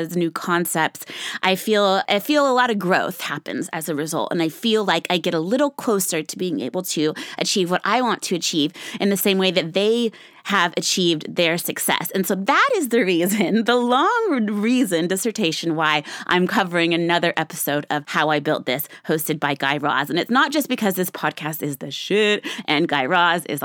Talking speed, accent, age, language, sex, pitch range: 205 wpm, American, 20-39, English, female, 170-245 Hz